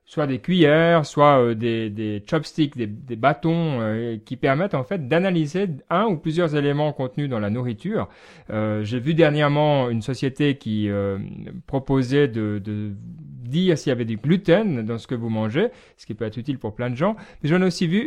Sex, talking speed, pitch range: male, 200 wpm, 120-170 Hz